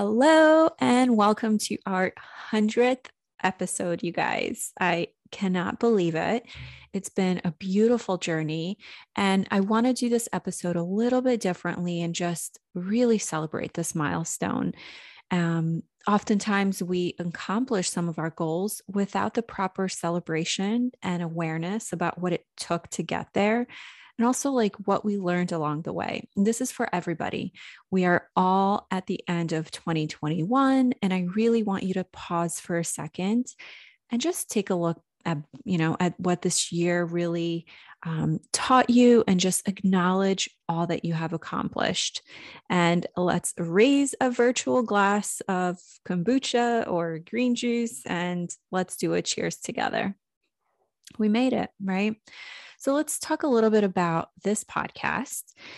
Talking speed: 150 wpm